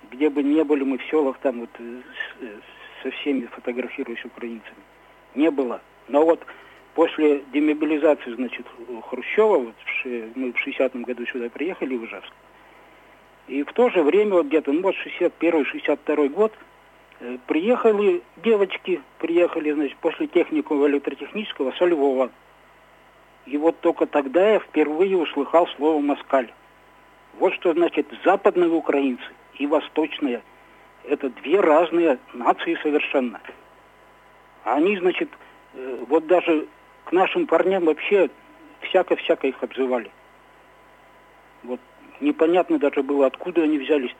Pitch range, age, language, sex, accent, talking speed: 140-175 Hz, 50-69, Russian, male, native, 125 wpm